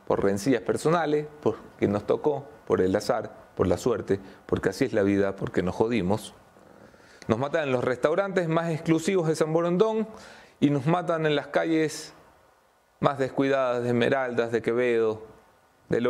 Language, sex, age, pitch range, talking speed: English, male, 30-49, 110-145 Hz, 160 wpm